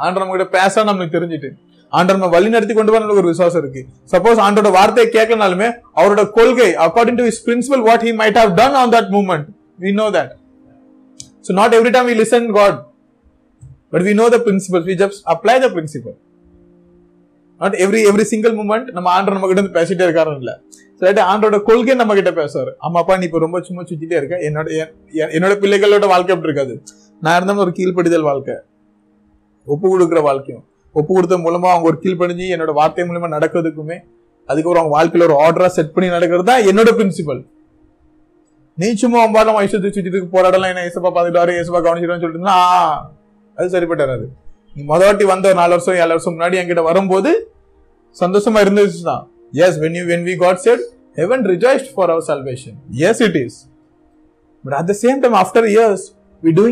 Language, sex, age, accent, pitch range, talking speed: Tamil, male, 30-49, native, 170-220 Hz, 60 wpm